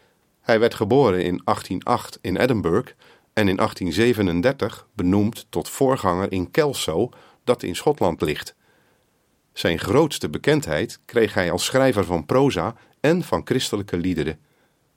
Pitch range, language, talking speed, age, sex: 90-130 Hz, Dutch, 130 wpm, 40-59, male